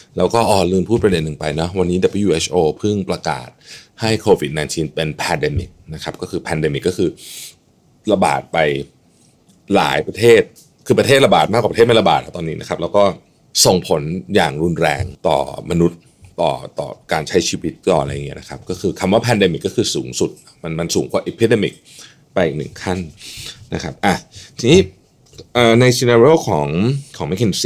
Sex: male